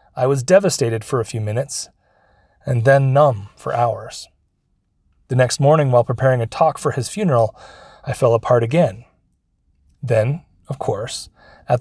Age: 30-49